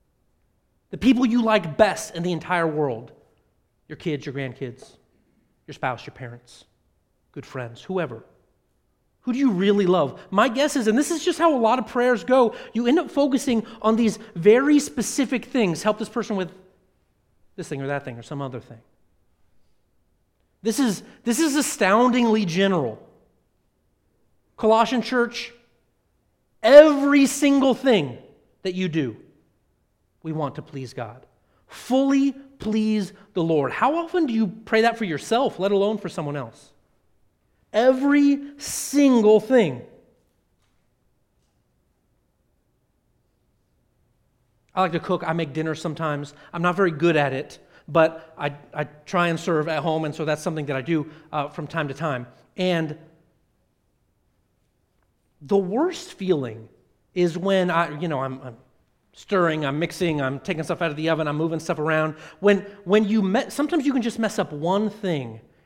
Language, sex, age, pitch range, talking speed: English, male, 30-49, 150-230 Hz, 155 wpm